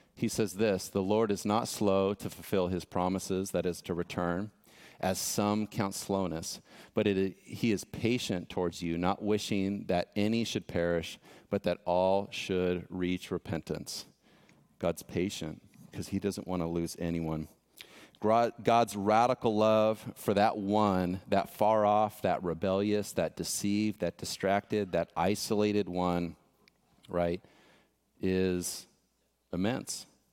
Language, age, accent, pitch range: English, 40-59, American, 90-105 Hz